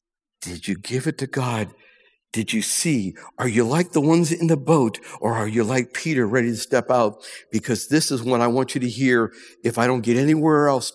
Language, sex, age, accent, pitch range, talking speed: English, male, 60-79, American, 110-145 Hz, 225 wpm